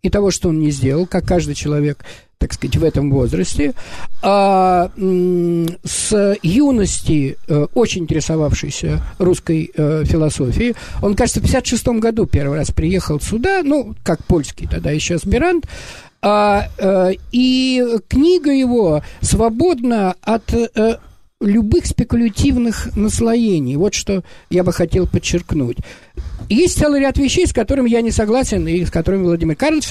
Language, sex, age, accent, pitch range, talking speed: Russian, male, 50-69, native, 175-240 Hz, 125 wpm